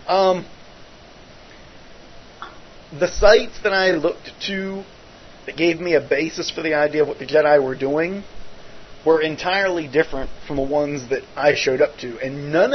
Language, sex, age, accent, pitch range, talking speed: English, male, 40-59, American, 145-185 Hz, 160 wpm